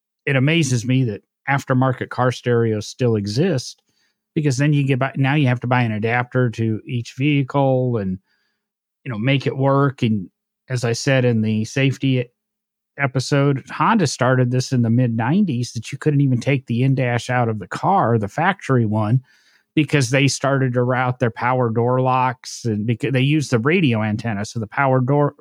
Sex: male